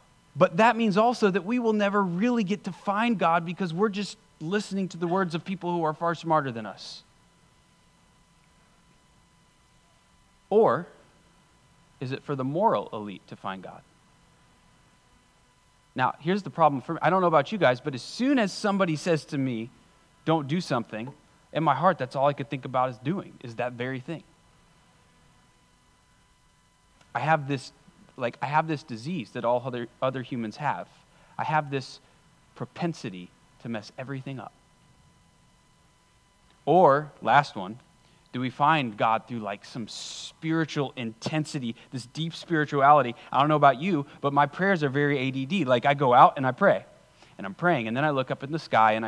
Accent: American